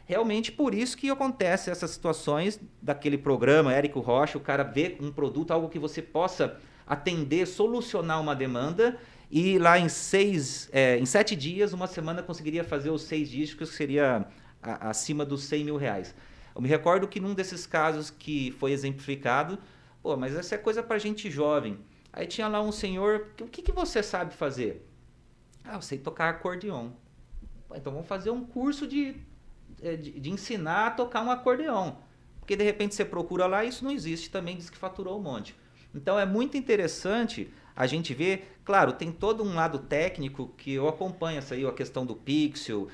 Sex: male